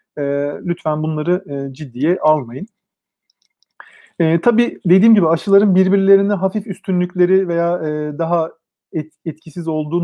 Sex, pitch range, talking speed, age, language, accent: male, 155-195 Hz, 95 wpm, 40-59, Turkish, native